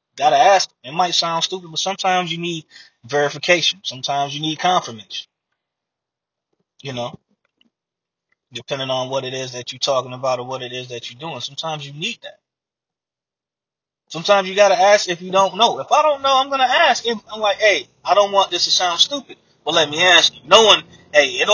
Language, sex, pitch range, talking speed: English, male, 155-215 Hz, 195 wpm